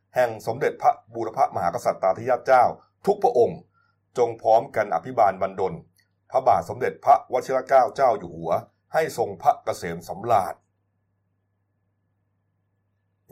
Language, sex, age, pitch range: Thai, male, 30-49, 95-125 Hz